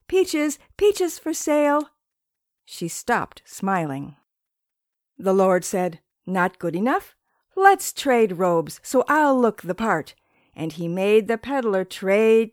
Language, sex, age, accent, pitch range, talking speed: English, female, 50-69, American, 180-290 Hz, 130 wpm